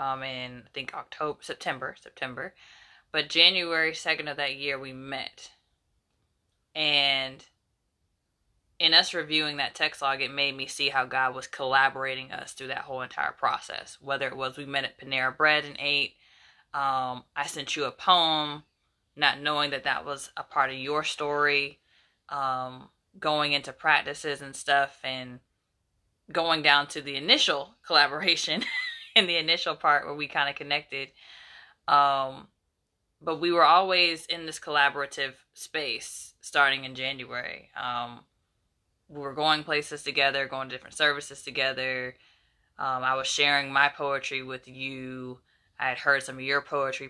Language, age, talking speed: English, 20-39, 155 wpm